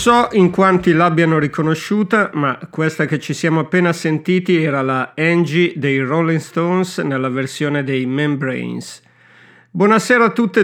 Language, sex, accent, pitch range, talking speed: Italian, male, native, 135-180 Hz, 140 wpm